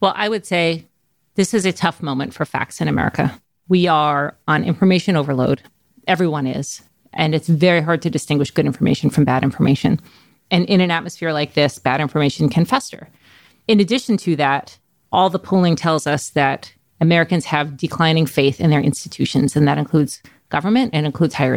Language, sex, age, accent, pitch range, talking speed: English, female, 40-59, American, 150-180 Hz, 180 wpm